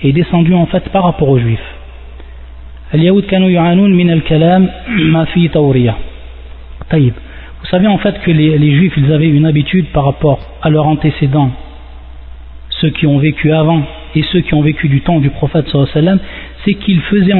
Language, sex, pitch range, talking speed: French, male, 135-180 Hz, 150 wpm